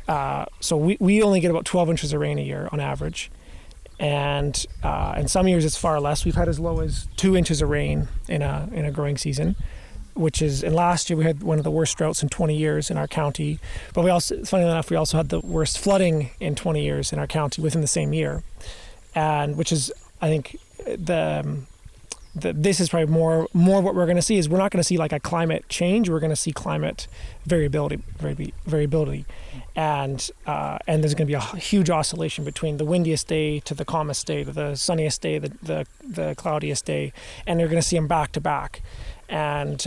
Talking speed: 220 wpm